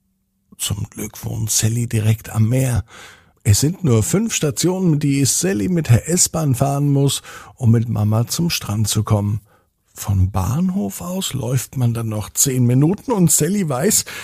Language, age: German, 60-79